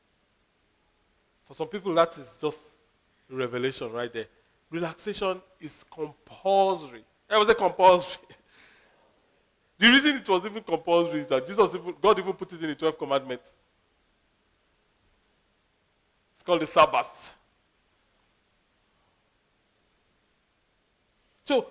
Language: English